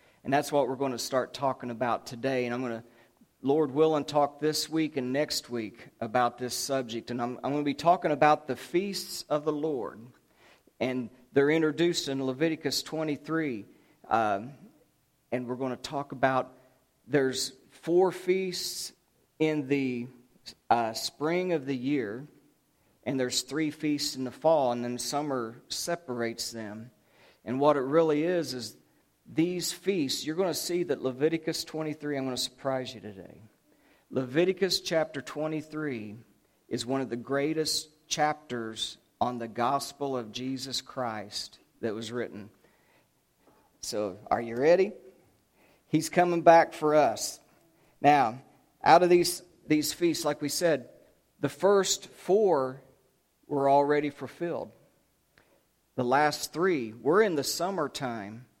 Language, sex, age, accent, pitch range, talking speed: English, male, 40-59, American, 125-155 Hz, 145 wpm